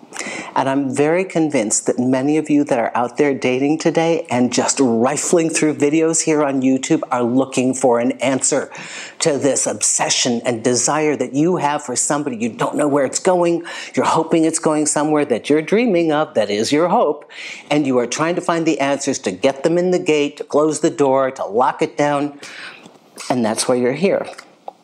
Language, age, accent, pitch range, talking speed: English, 50-69, American, 130-160 Hz, 200 wpm